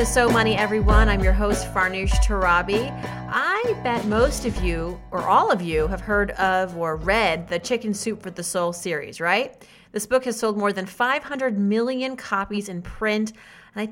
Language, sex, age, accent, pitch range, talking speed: English, female, 30-49, American, 180-230 Hz, 185 wpm